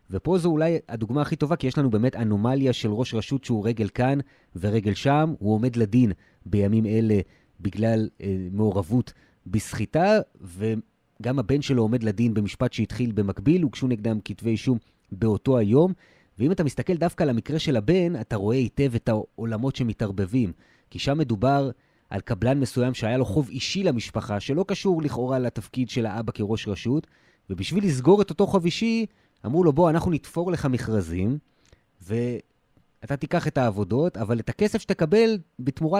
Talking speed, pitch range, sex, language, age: 155 wpm, 110-155 Hz, male, Hebrew, 30-49